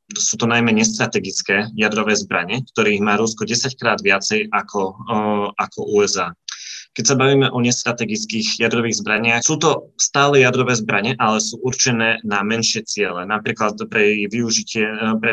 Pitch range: 110-125 Hz